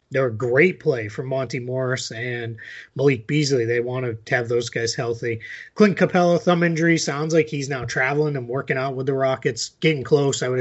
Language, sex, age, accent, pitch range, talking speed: English, male, 30-49, American, 125-150 Hz, 205 wpm